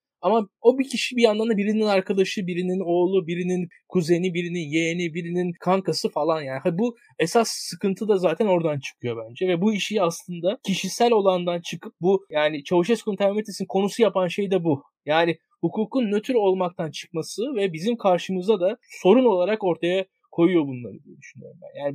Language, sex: Turkish, male